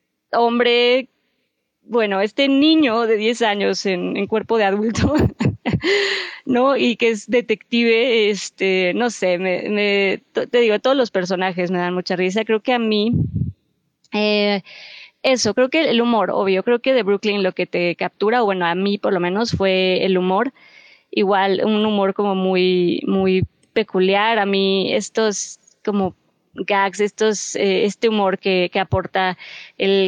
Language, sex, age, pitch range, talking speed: Spanish, female, 20-39, 185-225 Hz, 160 wpm